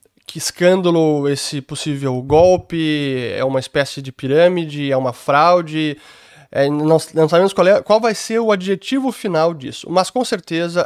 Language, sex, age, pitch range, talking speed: Portuguese, male, 20-39, 150-195 Hz, 160 wpm